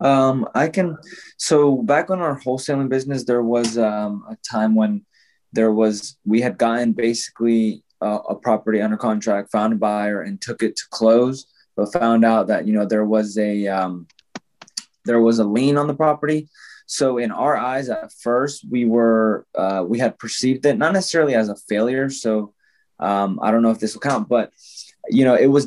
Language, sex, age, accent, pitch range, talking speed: English, male, 20-39, American, 110-130 Hz, 195 wpm